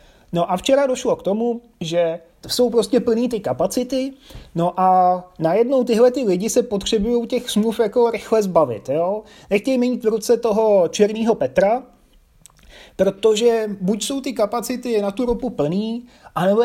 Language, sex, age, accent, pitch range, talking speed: Czech, male, 30-49, native, 185-220 Hz, 155 wpm